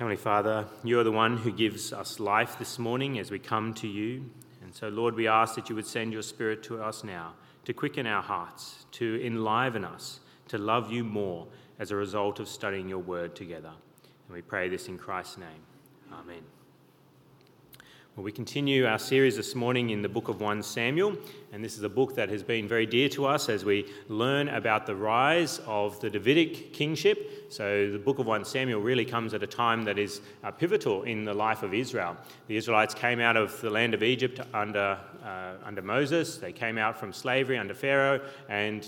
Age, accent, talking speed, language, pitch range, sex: 30-49, Australian, 205 wpm, English, 105-130 Hz, male